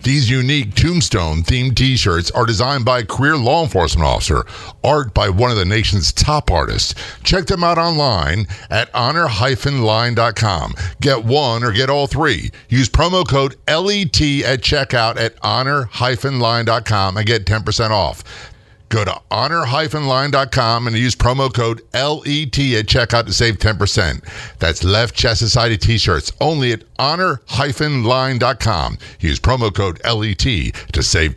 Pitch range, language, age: 95-135 Hz, English, 50-69